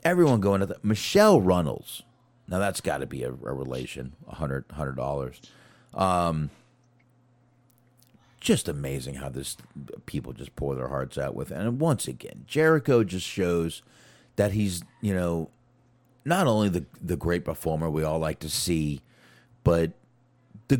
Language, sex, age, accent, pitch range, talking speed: English, male, 40-59, American, 75-120 Hz, 155 wpm